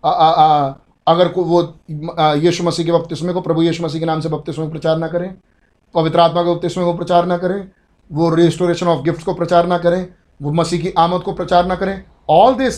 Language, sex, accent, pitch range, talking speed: Hindi, male, native, 175-235 Hz, 215 wpm